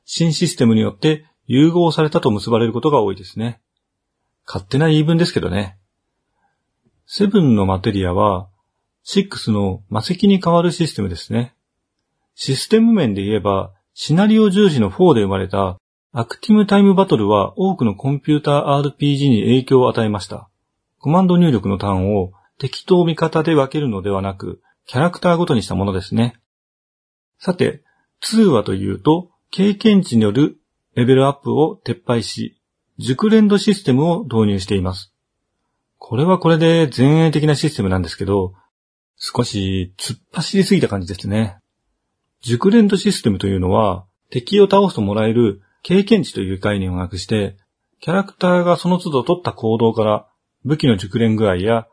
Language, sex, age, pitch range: Japanese, male, 40-59, 100-165 Hz